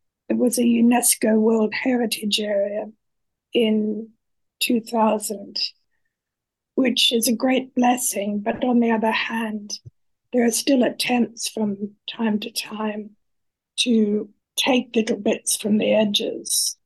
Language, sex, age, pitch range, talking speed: English, female, 60-79, 215-235 Hz, 120 wpm